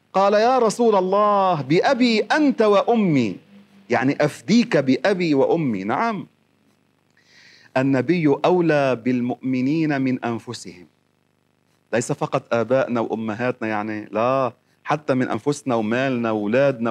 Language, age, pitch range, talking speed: Arabic, 40-59, 135-185 Hz, 100 wpm